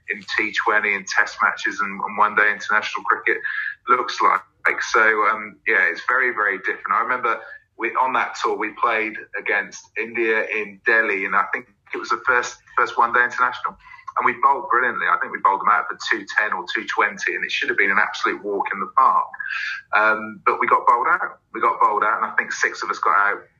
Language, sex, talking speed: English, male, 220 wpm